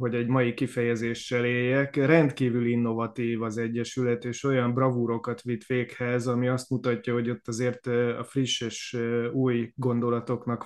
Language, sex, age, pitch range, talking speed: Hungarian, male, 20-39, 115-130 Hz, 140 wpm